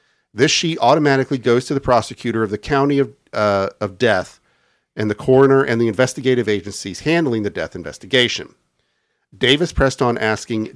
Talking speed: 155 wpm